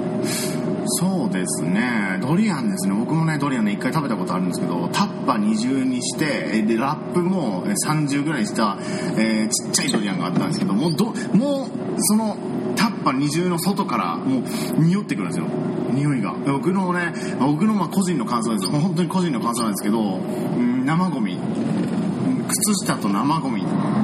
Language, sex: Japanese, male